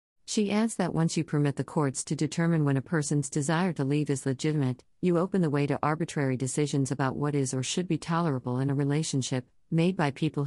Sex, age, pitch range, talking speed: female, 50-69, 130-160 Hz, 220 wpm